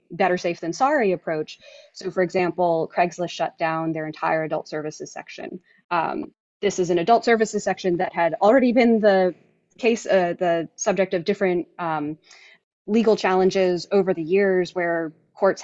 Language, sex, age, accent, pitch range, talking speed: English, female, 20-39, American, 170-195 Hz, 160 wpm